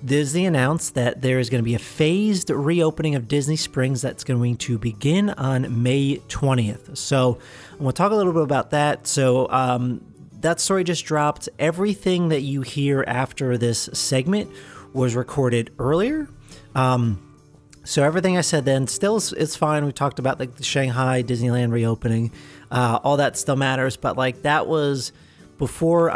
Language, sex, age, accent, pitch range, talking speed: English, male, 30-49, American, 120-150 Hz, 170 wpm